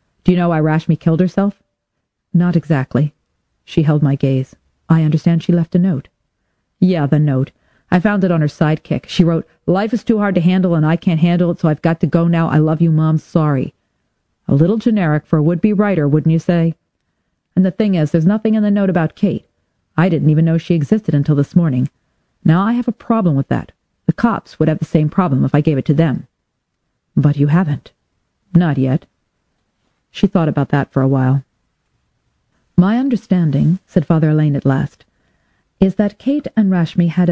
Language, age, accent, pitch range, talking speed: English, 40-59, American, 150-185 Hz, 205 wpm